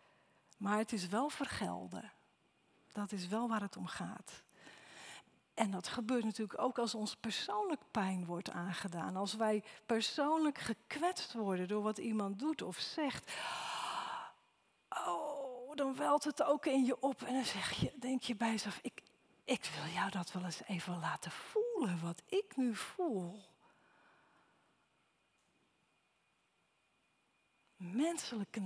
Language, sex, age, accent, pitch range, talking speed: Dutch, female, 40-59, Dutch, 225-305 Hz, 130 wpm